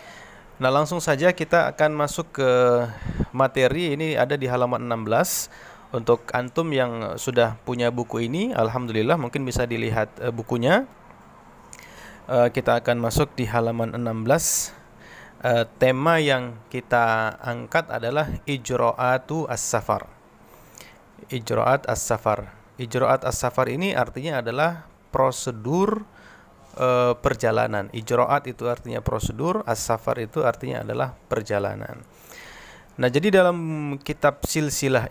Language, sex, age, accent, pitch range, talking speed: Indonesian, male, 30-49, native, 115-150 Hz, 105 wpm